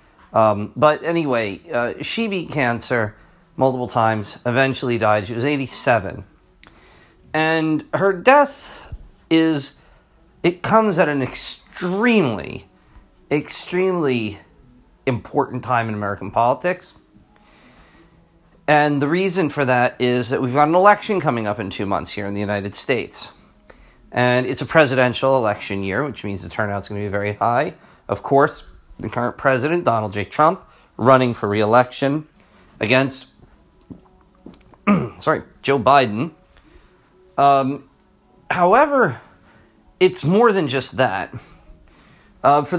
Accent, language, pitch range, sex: American, English, 110-150 Hz, male